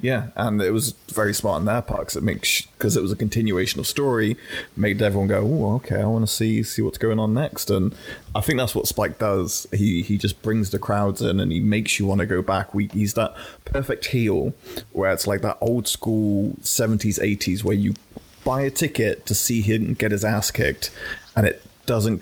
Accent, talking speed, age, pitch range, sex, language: British, 220 wpm, 20-39, 100-115 Hz, male, English